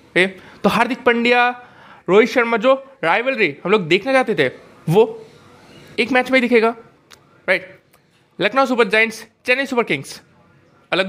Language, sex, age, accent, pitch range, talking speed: Hindi, male, 20-39, native, 190-255 Hz, 140 wpm